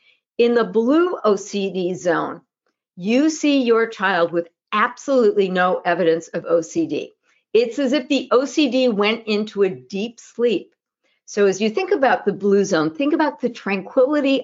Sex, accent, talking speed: female, American, 155 wpm